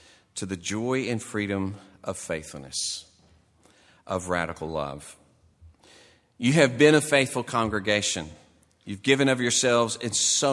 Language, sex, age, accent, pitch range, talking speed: English, male, 40-59, American, 95-130 Hz, 125 wpm